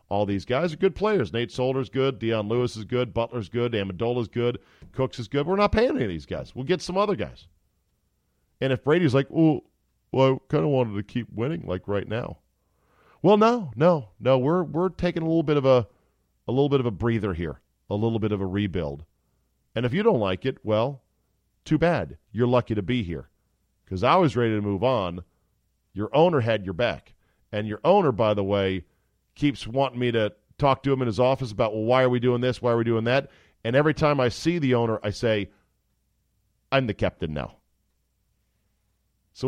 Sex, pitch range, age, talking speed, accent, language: male, 100-140 Hz, 40-59, 215 wpm, American, English